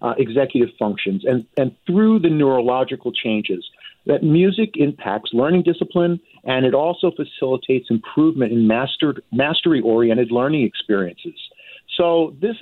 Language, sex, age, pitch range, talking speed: English, male, 50-69, 120-175 Hz, 130 wpm